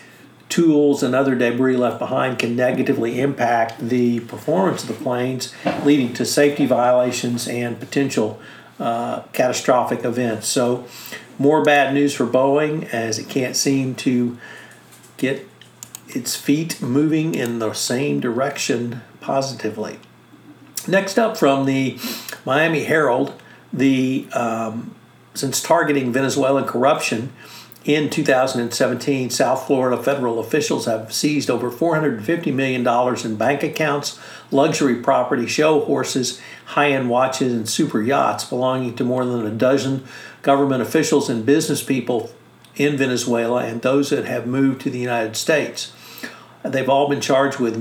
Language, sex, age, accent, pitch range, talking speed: English, male, 50-69, American, 120-140 Hz, 130 wpm